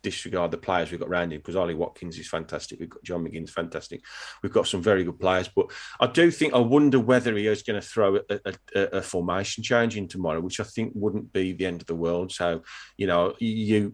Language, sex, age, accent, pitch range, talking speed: English, male, 30-49, British, 90-105 Hz, 240 wpm